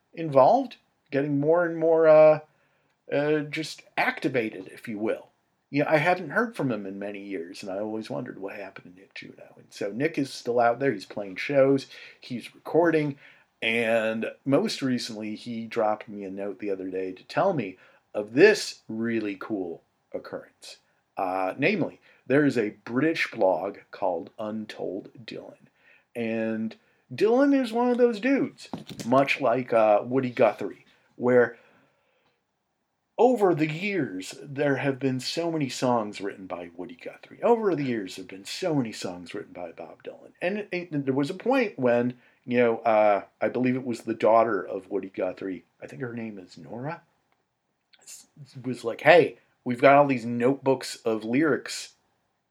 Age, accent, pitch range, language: 40-59, American, 110-145 Hz, English